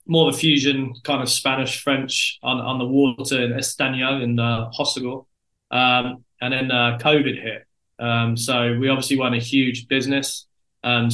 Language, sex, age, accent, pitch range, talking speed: English, male, 20-39, British, 120-145 Hz, 170 wpm